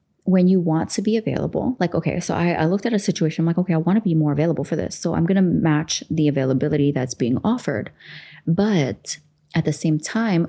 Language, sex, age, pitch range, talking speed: English, female, 20-39, 145-170 Hz, 235 wpm